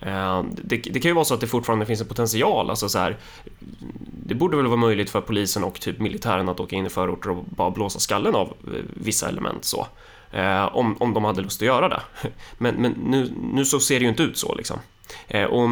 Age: 20-39